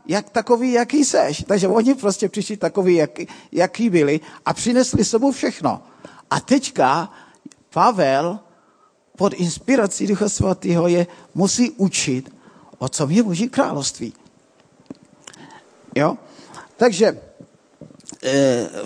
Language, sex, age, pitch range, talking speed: Czech, male, 50-69, 160-240 Hz, 105 wpm